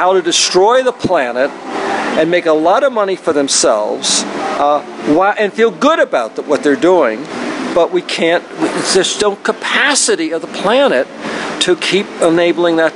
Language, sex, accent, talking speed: English, male, American, 165 wpm